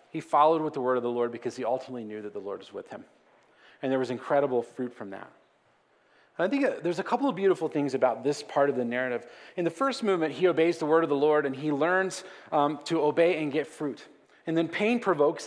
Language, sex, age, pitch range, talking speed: English, male, 30-49, 135-165 Hz, 245 wpm